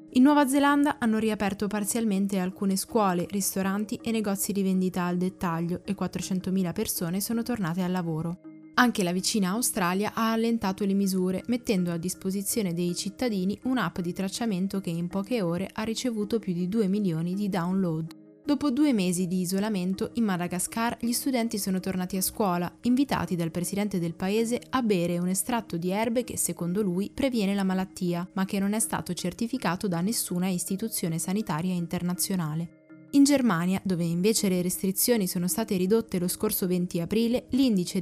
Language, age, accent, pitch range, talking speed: Italian, 20-39, native, 180-215 Hz, 165 wpm